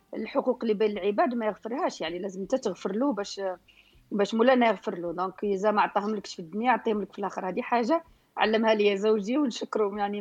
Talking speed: 200 wpm